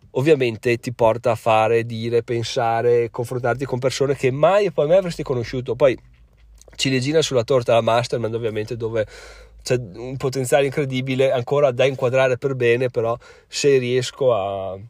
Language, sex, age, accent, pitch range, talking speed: Italian, male, 30-49, native, 125-160 Hz, 155 wpm